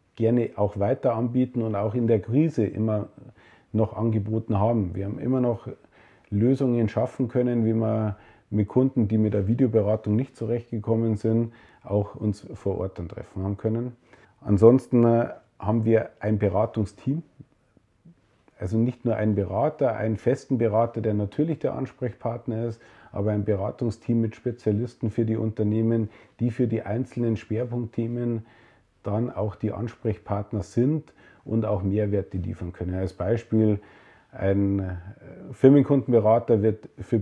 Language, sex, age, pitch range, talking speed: German, male, 40-59, 105-120 Hz, 140 wpm